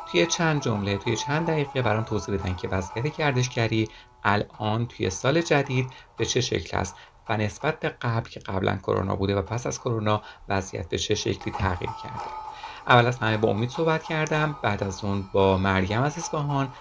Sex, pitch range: male, 100-140 Hz